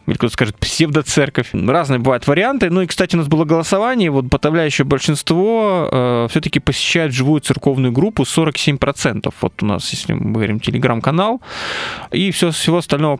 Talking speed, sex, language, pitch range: 155 wpm, male, Russian, 125-170 Hz